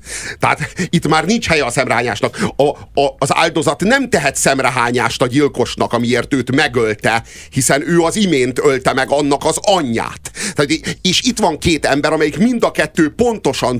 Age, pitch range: 50-69, 95-145 Hz